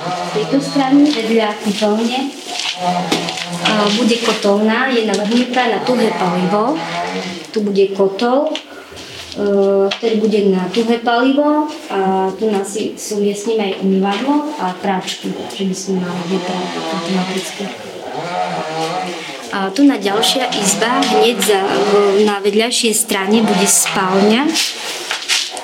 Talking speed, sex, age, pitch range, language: 105 wpm, male, 20-39, 195-230 Hz, Slovak